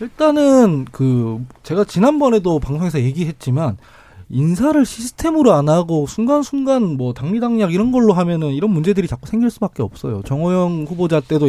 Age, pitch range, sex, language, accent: 20-39, 145-235 Hz, male, Korean, native